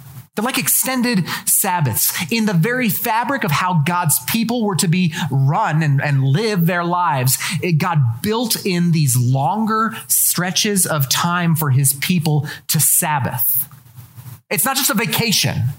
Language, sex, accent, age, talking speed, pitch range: English, male, American, 30-49, 150 wpm, 145-190 Hz